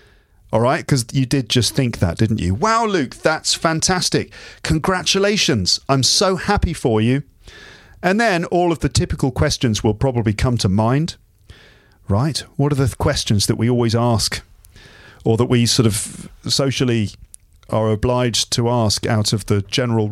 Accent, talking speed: British, 165 wpm